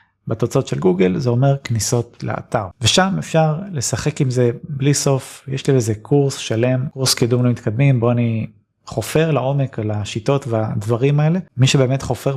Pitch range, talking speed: 115-140 Hz, 165 wpm